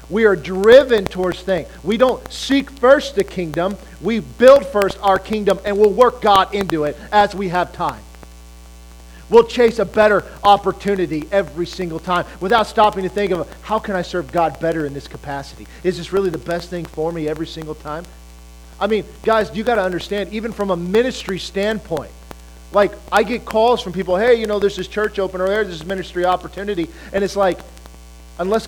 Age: 40-59